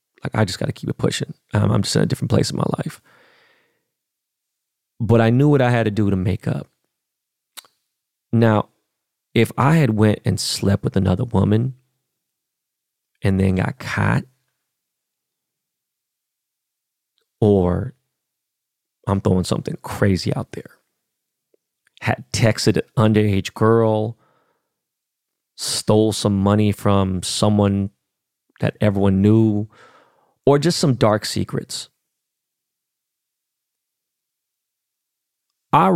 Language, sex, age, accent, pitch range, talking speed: English, male, 30-49, American, 100-125 Hz, 115 wpm